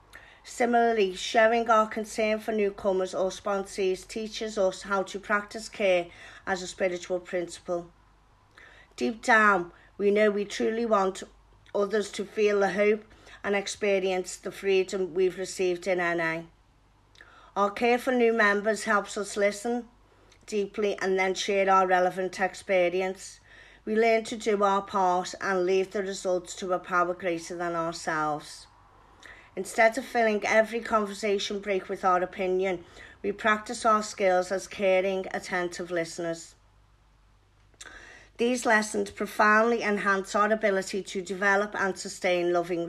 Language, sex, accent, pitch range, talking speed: English, female, British, 180-215 Hz, 135 wpm